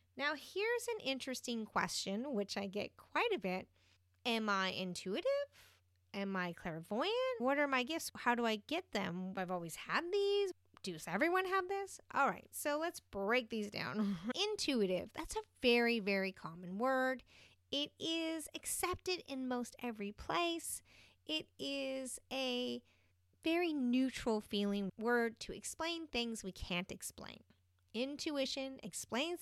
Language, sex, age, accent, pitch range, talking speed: English, female, 30-49, American, 200-300 Hz, 145 wpm